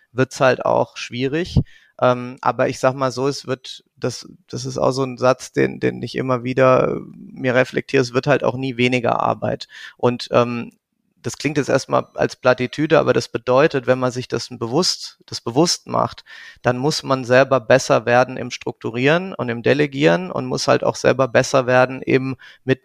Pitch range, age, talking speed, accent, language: 120-135 Hz, 30-49, 190 wpm, German, German